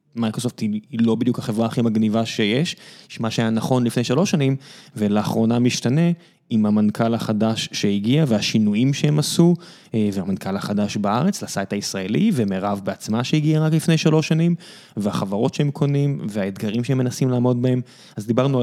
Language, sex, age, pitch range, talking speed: Hebrew, male, 20-39, 110-145 Hz, 150 wpm